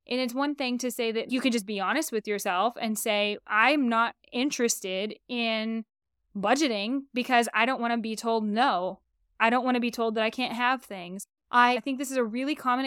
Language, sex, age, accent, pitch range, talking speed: English, female, 10-29, American, 225-270 Hz, 220 wpm